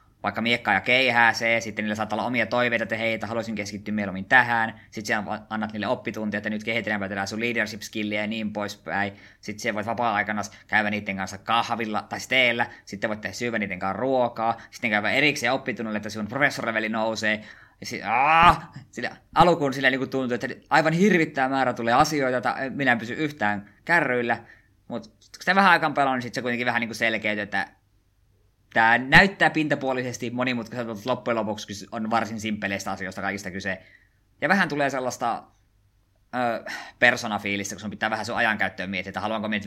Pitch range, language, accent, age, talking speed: 100-120 Hz, Finnish, native, 20-39, 175 wpm